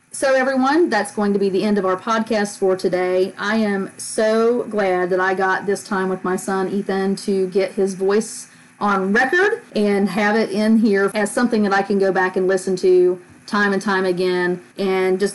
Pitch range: 185-205 Hz